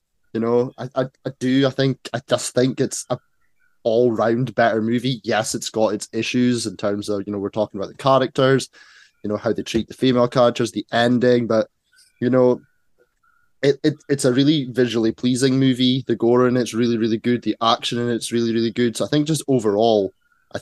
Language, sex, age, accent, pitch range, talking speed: English, male, 20-39, British, 105-125 Hz, 210 wpm